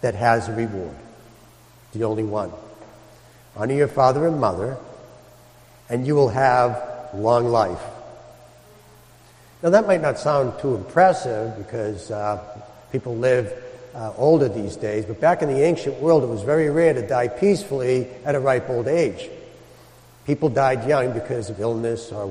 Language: English